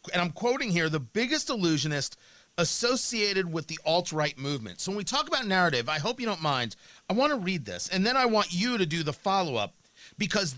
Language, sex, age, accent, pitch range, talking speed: English, male, 40-59, American, 165-220 Hz, 215 wpm